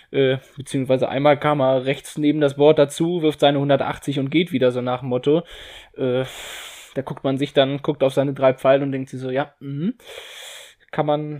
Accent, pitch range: German, 140-150 Hz